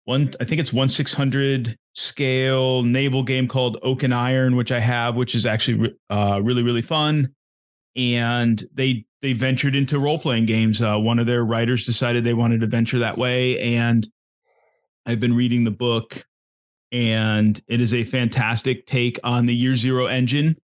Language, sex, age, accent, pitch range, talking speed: English, male, 30-49, American, 115-130 Hz, 175 wpm